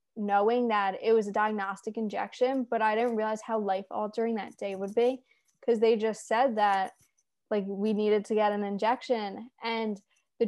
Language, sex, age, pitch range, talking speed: English, female, 10-29, 205-240 Hz, 180 wpm